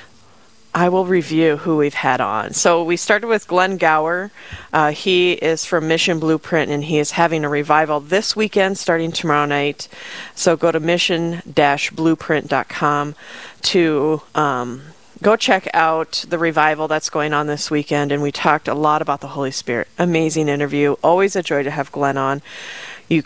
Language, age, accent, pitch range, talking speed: English, 40-59, American, 150-180 Hz, 170 wpm